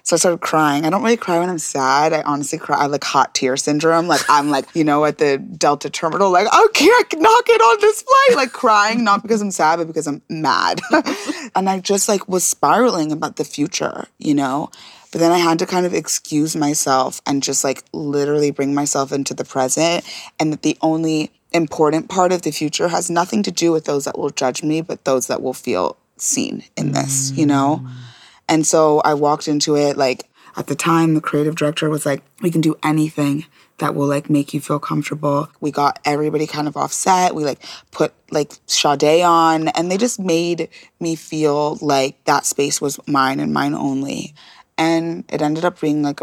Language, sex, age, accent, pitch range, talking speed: English, female, 20-39, American, 145-175 Hz, 210 wpm